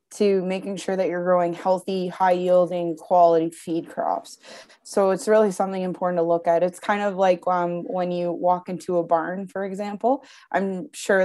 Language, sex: English, female